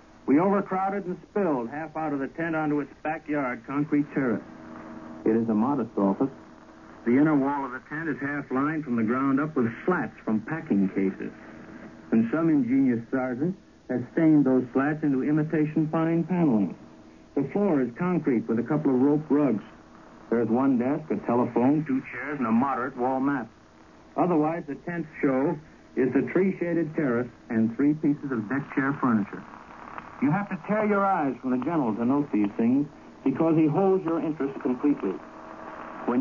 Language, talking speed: English, 175 wpm